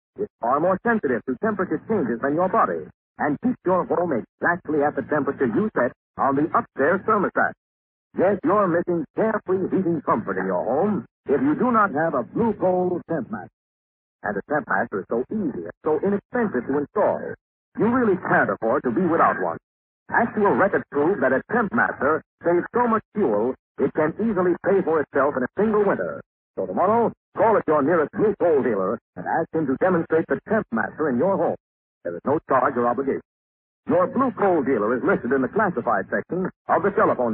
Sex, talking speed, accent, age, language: male, 195 wpm, American, 60-79, English